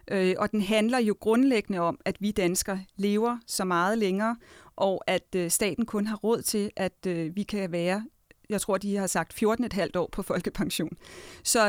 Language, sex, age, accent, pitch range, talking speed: Danish, female, 30-49, native, 195-245 Hz, 175 wpm